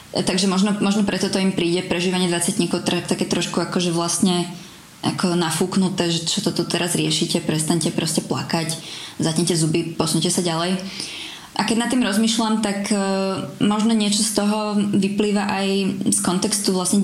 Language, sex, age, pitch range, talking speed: Slovak, female, 20-39, 170-195 Hz, 155 wpm